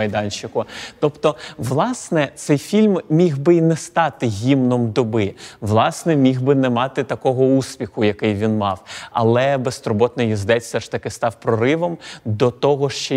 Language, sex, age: Ukrainian, male, 30-49